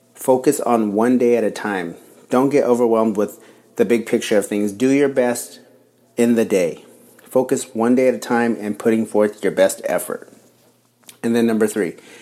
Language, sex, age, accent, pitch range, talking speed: English, male, 30-49, American, 105-125 Hz, 185 wpm